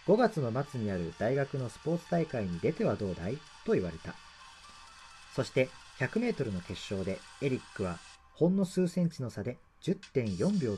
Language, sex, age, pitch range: Japanese, male, 40-59, 105-170 Hz